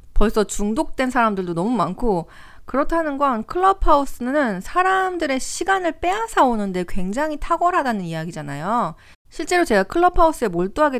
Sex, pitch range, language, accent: female, 185-285 Hz, Korean, native